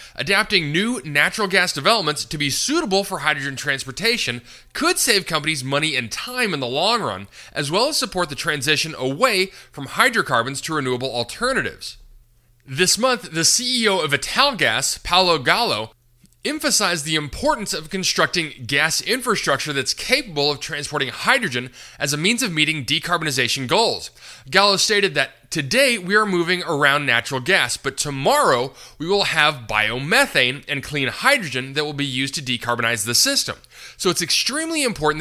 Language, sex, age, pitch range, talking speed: English, male, 20-39, 130-195 Hz, 155 wpm